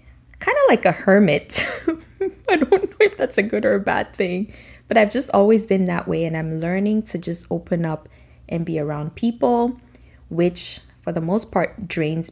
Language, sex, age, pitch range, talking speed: English, female, 20-39, 165-220 Hz, 195 wpm